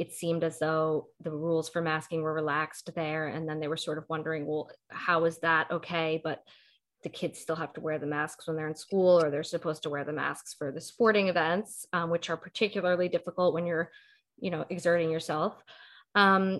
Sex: female